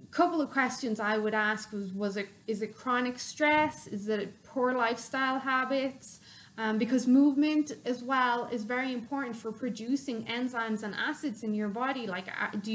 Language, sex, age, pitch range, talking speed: English, female, 20-39, 220-285 Hz, 175 wpm